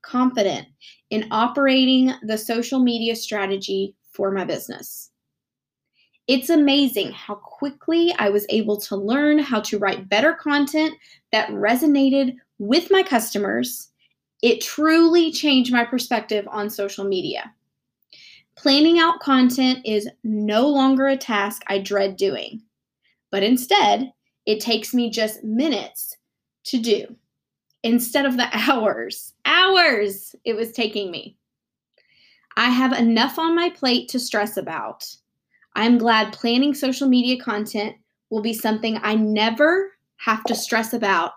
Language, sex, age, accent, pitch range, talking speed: English, female, 10-29, American, 210-270 Hz, 130 wpm